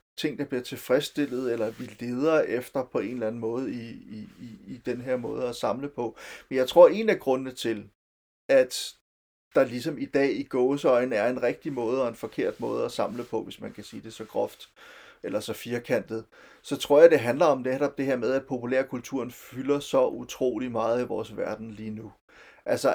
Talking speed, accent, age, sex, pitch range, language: 205 wpm, native, 30-49, male, 120-145 Hz, Danish